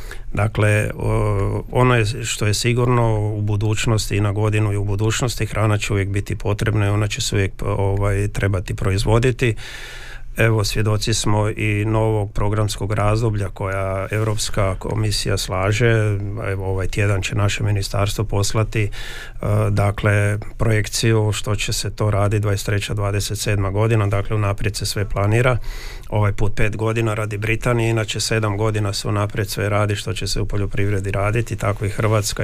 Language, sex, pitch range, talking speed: Croatian, male, 105-120 Hz, 155 wpm